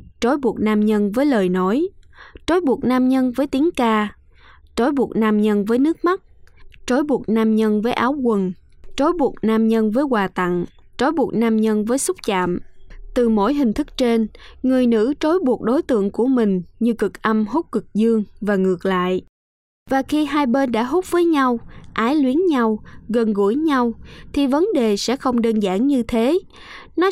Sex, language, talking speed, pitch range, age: female, Vietnamese, 195 wpm, 215-280 Hz, 20-39